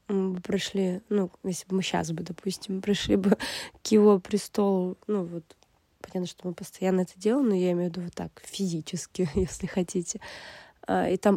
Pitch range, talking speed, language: 190-230 Hz, 190 wpm, Russian